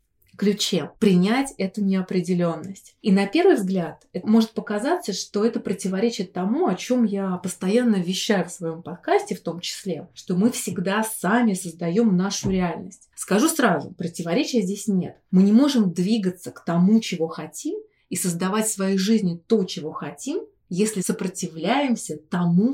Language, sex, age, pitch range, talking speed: Russian, female, 30-49, 175-220 Hz, 150 wpm